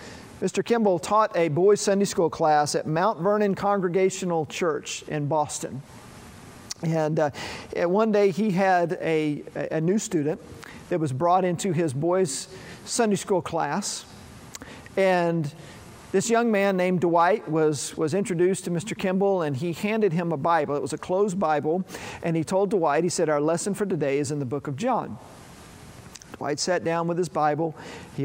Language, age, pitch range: English, 50-69, 150-185 Hz